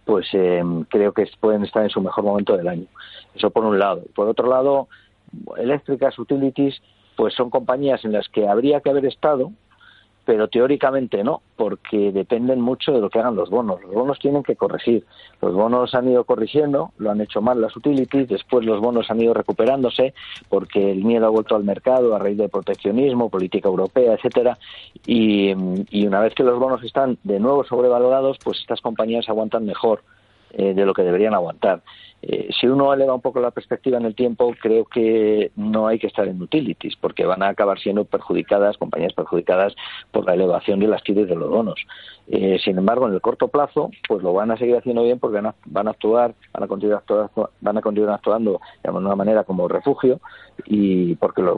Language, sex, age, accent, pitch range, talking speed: Spanish, male, 50-69, Spanish, 105-130 Hz, 200 wpm